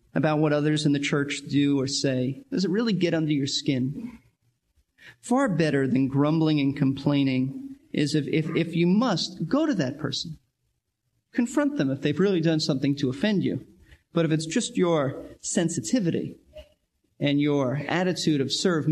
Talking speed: 170 wpm